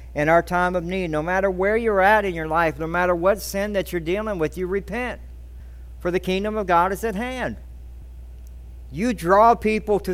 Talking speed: 205 wpm